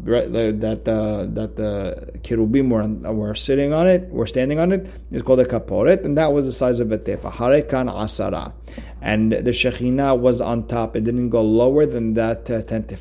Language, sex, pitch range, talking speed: English, male, 110-130 Hz, 200 wpm